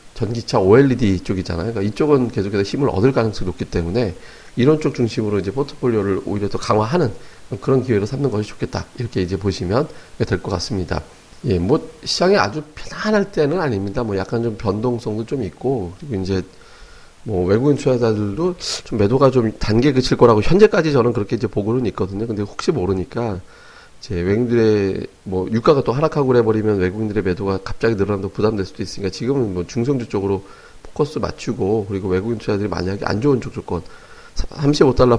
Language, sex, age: Korean, male, 40-59